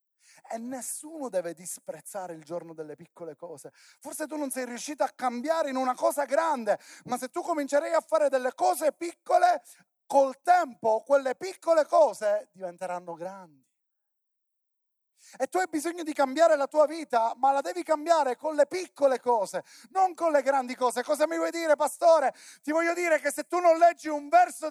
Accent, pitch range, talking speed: native, 250-325 Hz, 175 wpm